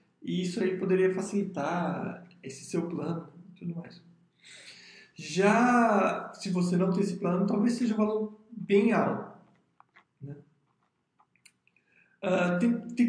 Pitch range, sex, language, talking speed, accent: 160-200 Hz, male, Portuguese, 125 wpm, Brazilian